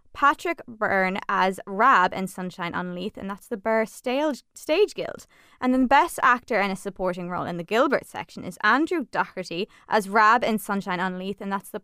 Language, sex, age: English, female, 20-39